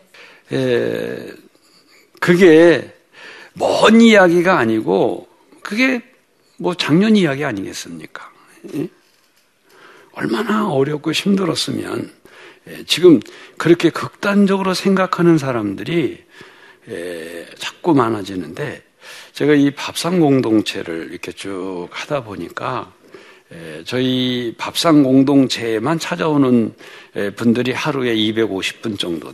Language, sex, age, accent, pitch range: Korean, male, 60-79, native, 110-165 Hz